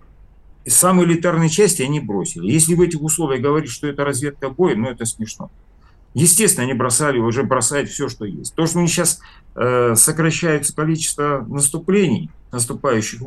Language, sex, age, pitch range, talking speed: Russian, male, 50-69, 110-155 Hz, 155 wpm